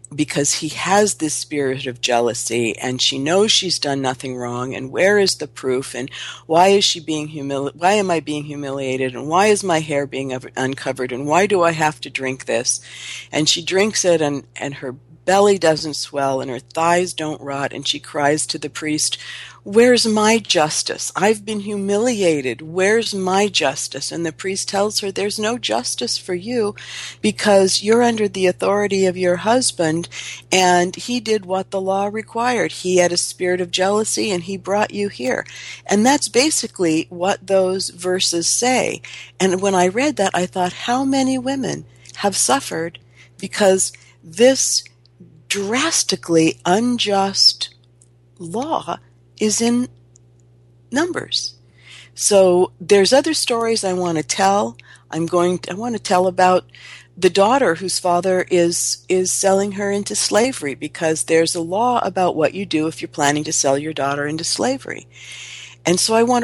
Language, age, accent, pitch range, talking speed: English, 50-69, American, 140-200 Hz, 165 wpm